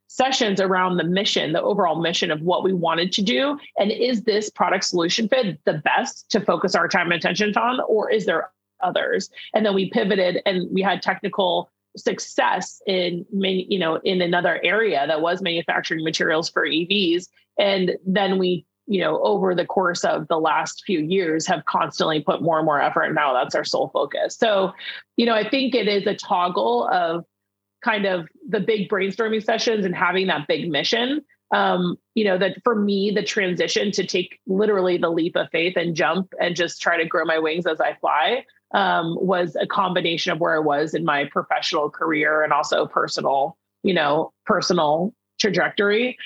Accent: American